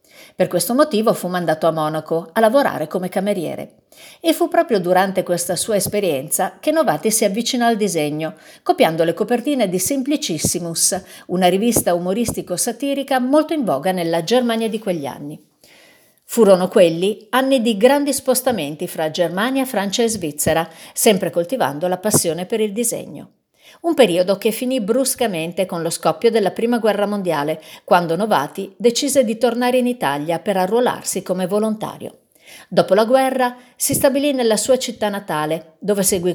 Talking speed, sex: 150 wpm, female